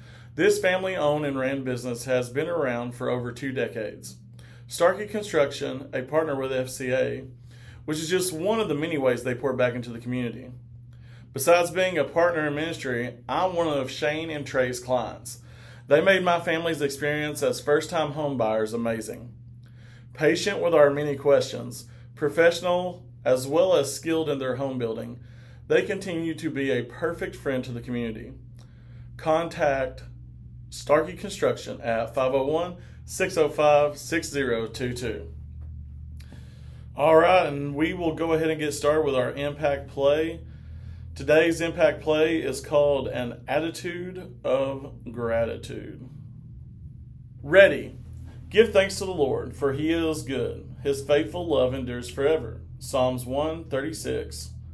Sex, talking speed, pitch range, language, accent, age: male, 135 wpm, 120-155 Hz, English, American, 40-59